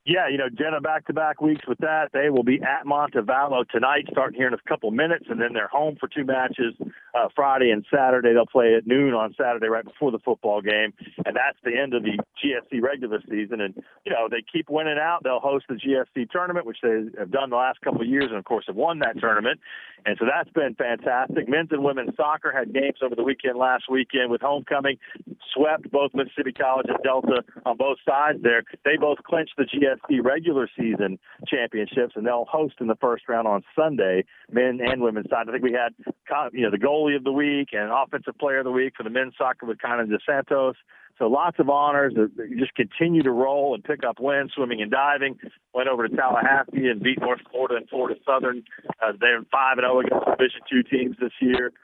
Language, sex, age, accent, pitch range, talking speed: English, male, 50-69, American, 125-150 Hz, 220 wpm